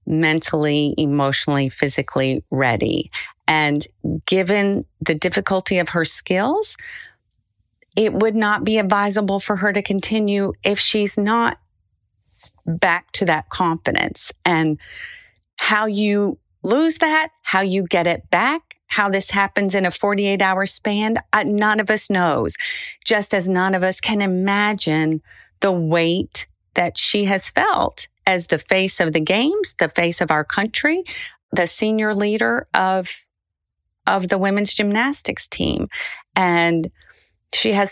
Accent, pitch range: American, 170-215 Hz